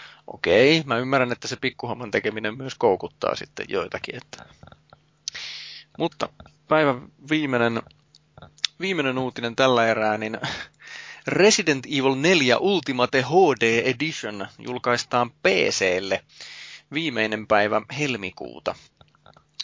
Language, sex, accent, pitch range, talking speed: Finnish, male, native, 115-150 Hz, 95 wpm